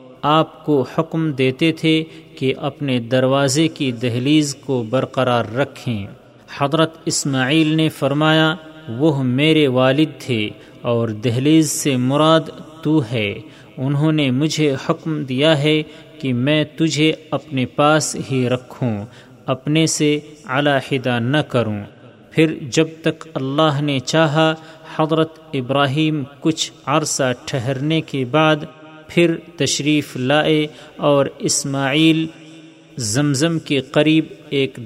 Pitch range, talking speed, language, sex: 130-155 Hz, 115 wpm, Urdu, male